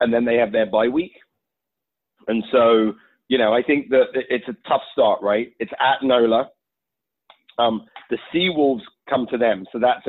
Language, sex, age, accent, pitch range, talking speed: English, male, 40-59, British, 105-130 Hz, 180 wpm